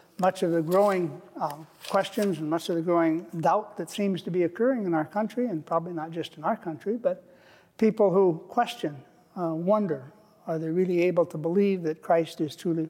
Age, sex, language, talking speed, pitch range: 60-79, male, English, 200 wpm, 160-195 Hz